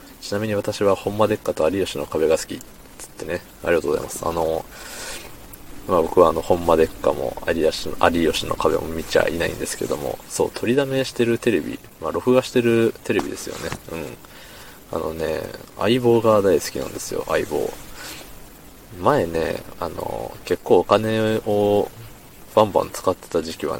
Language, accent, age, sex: Japanese, native, 20-39, male